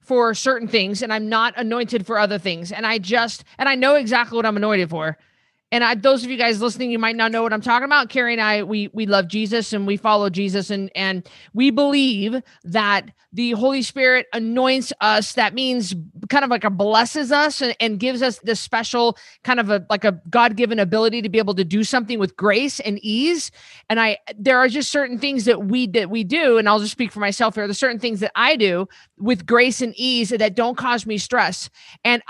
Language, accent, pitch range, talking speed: English, American, 210-260 Hz, 230 wpm